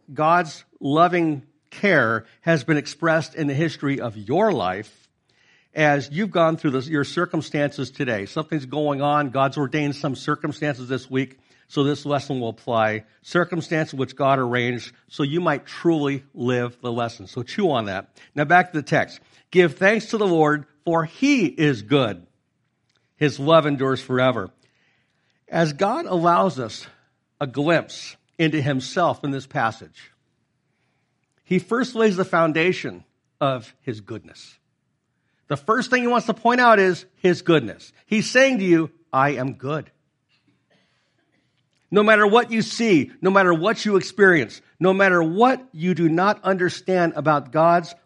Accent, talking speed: American, 155 wpm